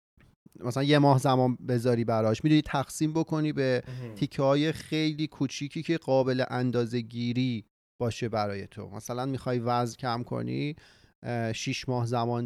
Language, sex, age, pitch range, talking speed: Persian, male, 30-49, 120-145 Hz, 140 wpm